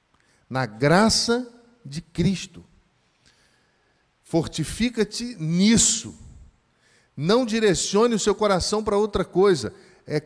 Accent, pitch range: Brazilian, 185-245 Hz